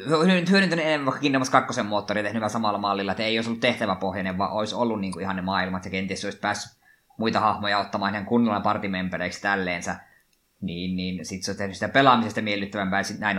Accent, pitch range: native, 95-120 Hz